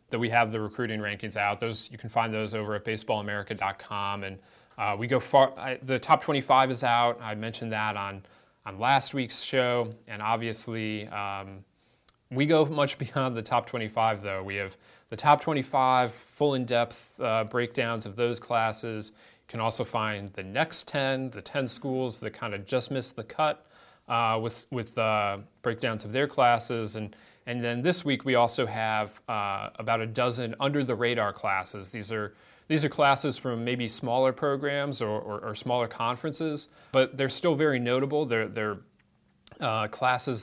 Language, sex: English, male